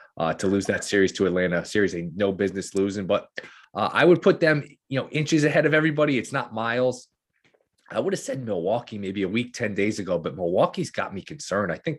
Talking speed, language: 220 wpm, English